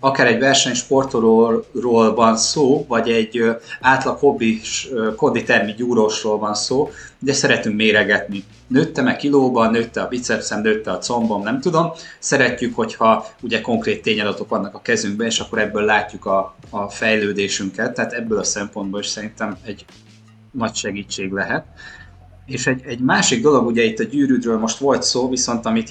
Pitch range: 105-130 Hz